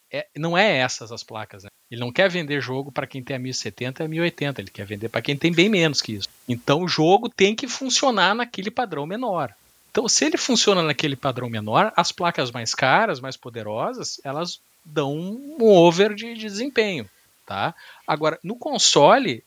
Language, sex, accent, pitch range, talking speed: Portuguese, male, Brazilian, 135-195 Hz, 195 wpm